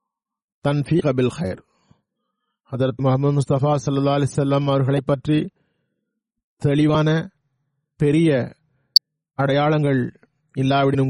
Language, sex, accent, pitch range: Tamil, male, native, 130-145 Hz